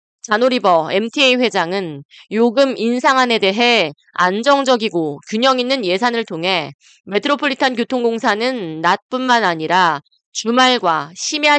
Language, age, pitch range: Korean, 20-39, 185-260 Hz